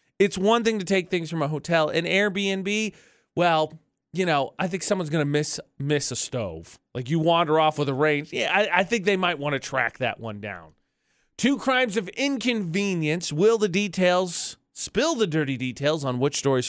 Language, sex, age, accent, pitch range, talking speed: English, male, 30-49, American, 145-215 Hz, 195 wpm